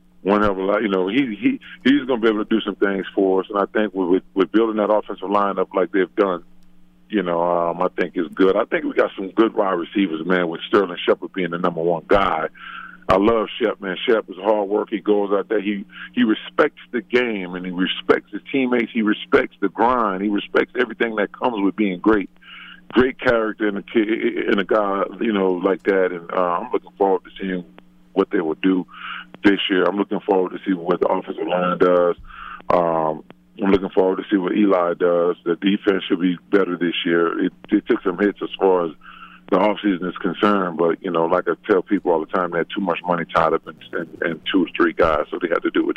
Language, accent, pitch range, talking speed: English, American, 85-110 Hz, 235 wpm